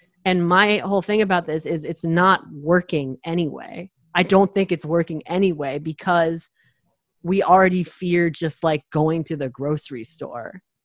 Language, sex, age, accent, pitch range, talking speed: English, female, 30-49, American, 150-175 Hz, 155 wpm